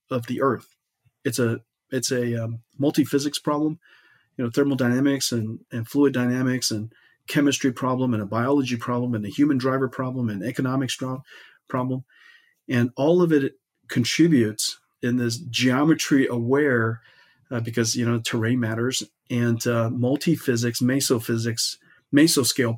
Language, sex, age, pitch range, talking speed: English, male, 40-59, 115-135 Hz, 140 wpm